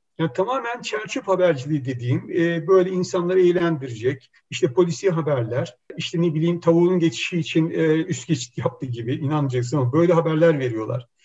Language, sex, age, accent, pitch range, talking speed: Turkish, male, 60-79, native, 140-185 Hz, 150 wpm